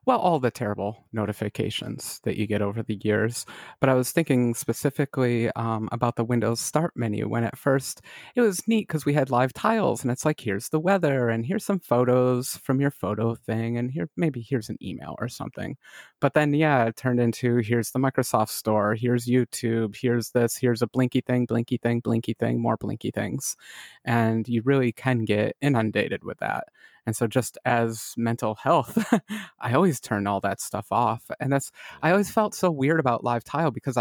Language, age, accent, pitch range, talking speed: English, 30-49, American, 115-140 Hz, 200 wpm